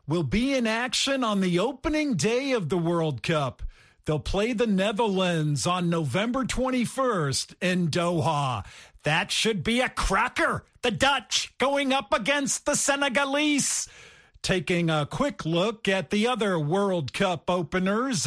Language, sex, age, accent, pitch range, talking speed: English, male, 50-69, American, 170-235 Hz, 140 wpm